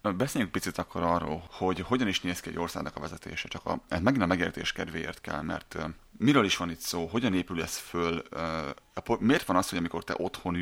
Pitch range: 85-100 Hz